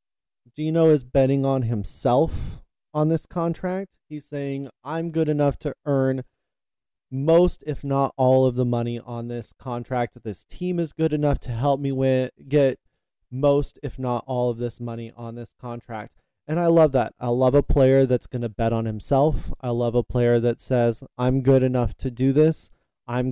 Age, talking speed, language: 20-39, 185 wpm, English